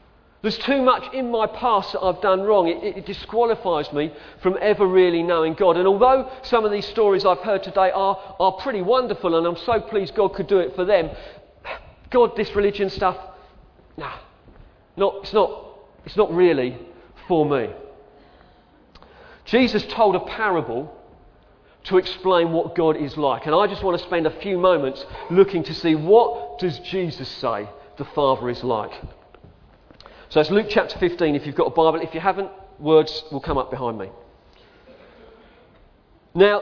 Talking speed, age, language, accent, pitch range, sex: 175 wpm, 40-59, English, British, 165-220 Hz, male